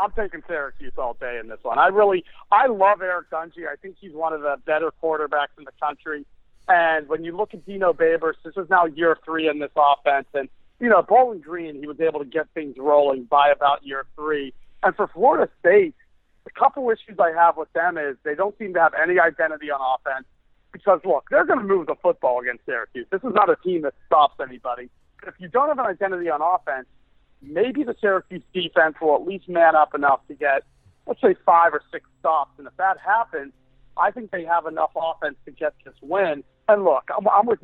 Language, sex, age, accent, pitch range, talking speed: English, male, 40-59, American, 150-195 Hz, 220 wpm